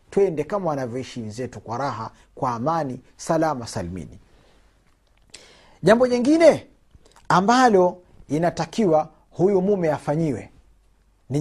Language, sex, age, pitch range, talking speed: Swahili, male, 40-59, 110-185 Hz, 95 wpm